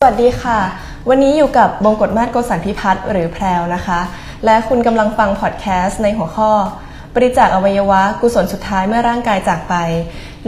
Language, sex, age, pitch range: Thai, female, 20-39, 180-235 Hz